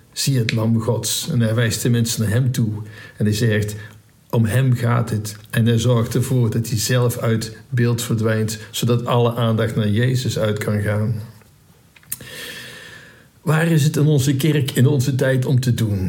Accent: Dutch